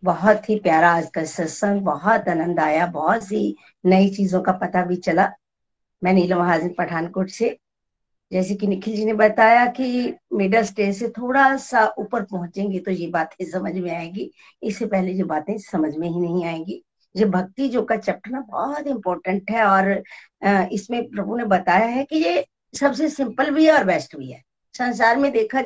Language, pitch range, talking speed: Hindi, 190-255 Hz, 180 wpm